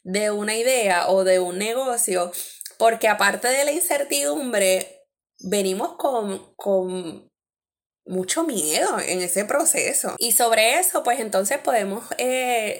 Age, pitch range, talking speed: 20-39, 185-235 Hz, 125 wpm